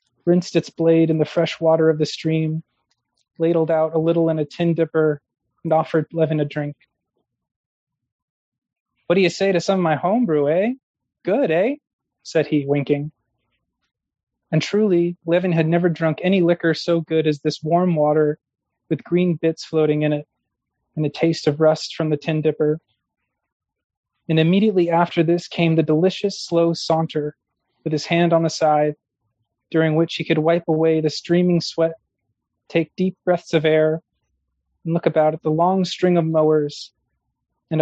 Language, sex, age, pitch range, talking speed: English, male, 20-39, 155-175 Hz, 170 wpm